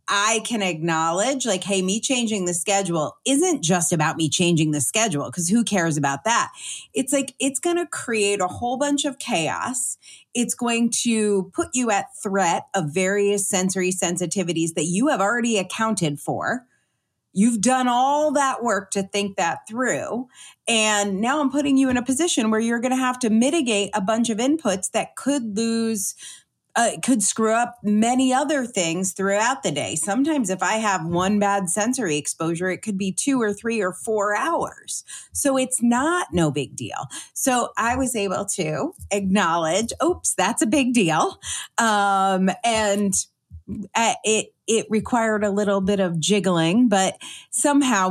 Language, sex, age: English, female, 30-49